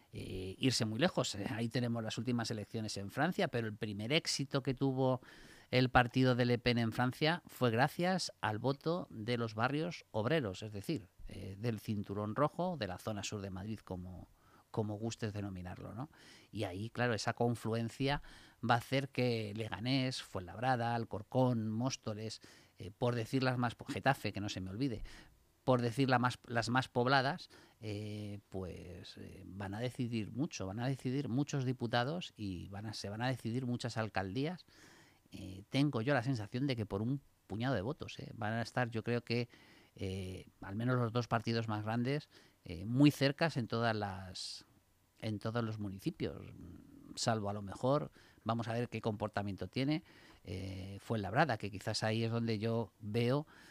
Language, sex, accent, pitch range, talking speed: Spanish, male, Spanish, 105-130 Hz, 175 wpm